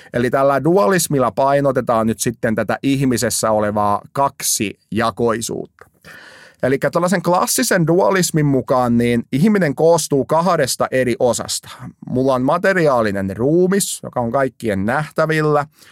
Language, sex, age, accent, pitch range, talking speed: Finnish, male, 30-49, native, 110-150 Hz, 115 wpm